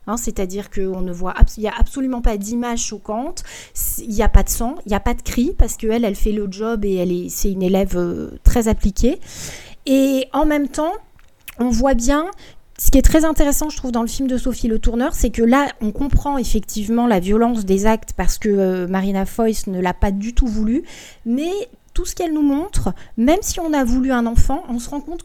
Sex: female